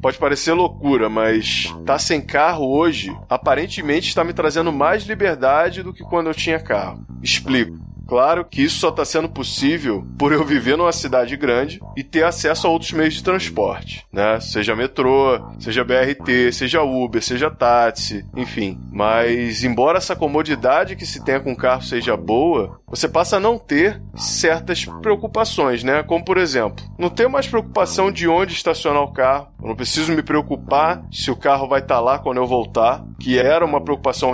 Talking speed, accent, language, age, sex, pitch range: 180 wpm, Brazilian, Portuguese, 20-39, male, 120-155 Hz